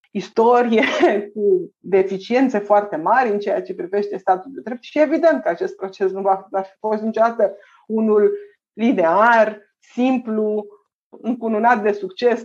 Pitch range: 200-260 Hz